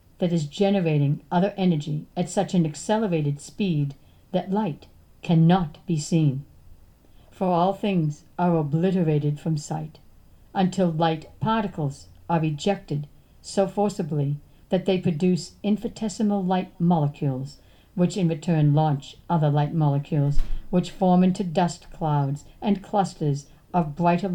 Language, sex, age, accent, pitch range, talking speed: English, female, 60-79, American, 145-185 Hz, 125 wpm